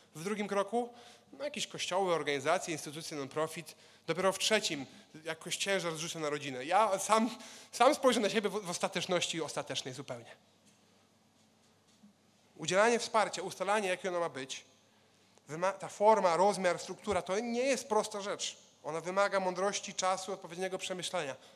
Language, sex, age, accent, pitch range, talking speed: Polish, male, 30-49, native, 150-195 Hz, 140 wpm